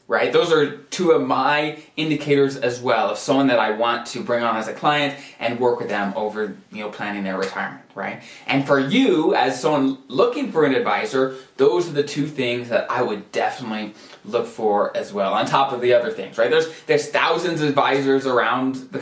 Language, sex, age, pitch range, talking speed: English, male, 20-39, 120-155 Hz, 210 wpm